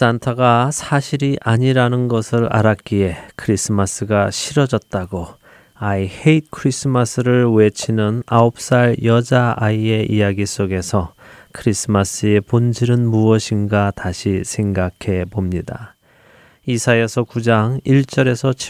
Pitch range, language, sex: 100-125 Hz, Korean, male